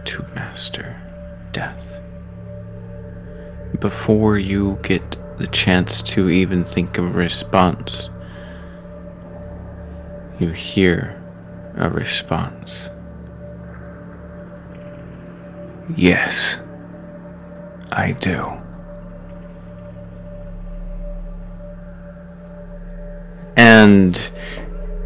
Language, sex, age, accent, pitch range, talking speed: English, male, 30-49, American, 85-95 Hz, 55 wpm